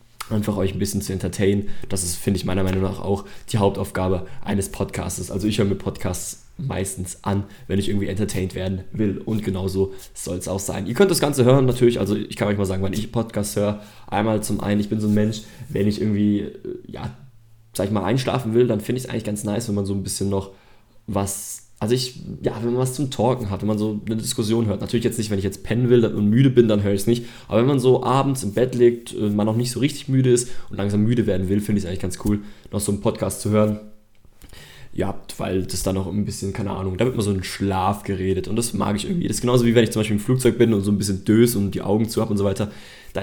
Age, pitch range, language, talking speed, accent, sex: 20-39, 100-120 Hz, German, 270 wpm, German, male